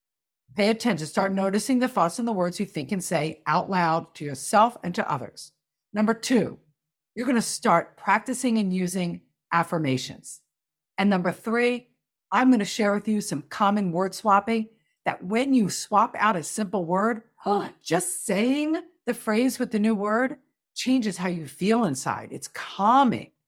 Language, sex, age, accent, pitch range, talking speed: English, female, 50-69, American, 165-230 Hz, 165 wpm